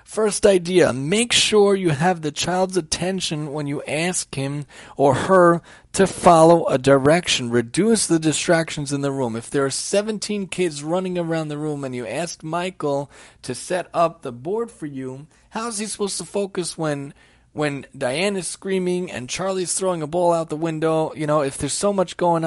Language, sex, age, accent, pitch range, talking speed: English, male, 30-49, American, 145-190 Hz, 185 wpm